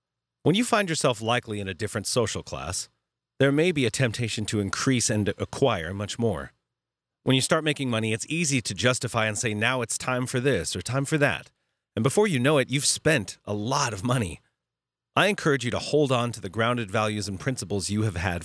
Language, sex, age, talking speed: English, male, 30-49, 220 wpm